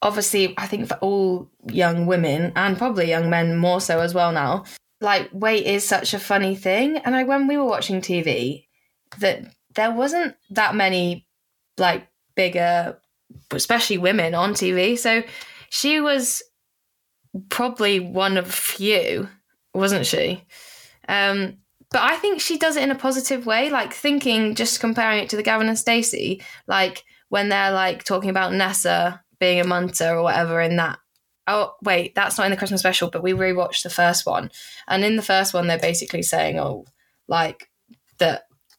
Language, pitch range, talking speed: English, 180-230 Hz, 170 wpm